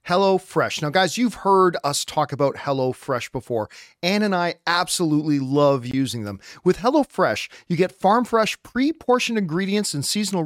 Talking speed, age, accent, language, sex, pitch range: 150 wpm, 40-59, American, English, male, 160-210 Hz